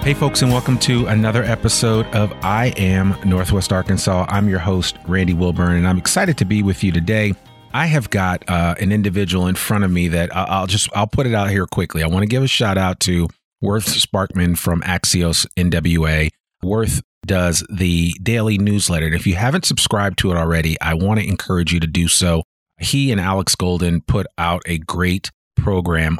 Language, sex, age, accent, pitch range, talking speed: English, male, 40-59, American, 90-110 Hz, 200 wpm